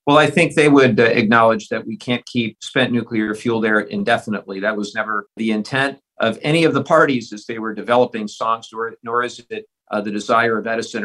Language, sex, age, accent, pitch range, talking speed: English, male, 50-69, American, 115-145 Hz, 205 wpm